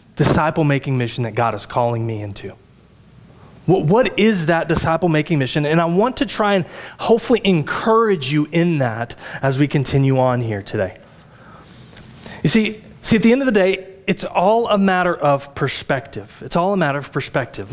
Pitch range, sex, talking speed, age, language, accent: 145-220 Hz, male, 175 wpm, 30-49, English, American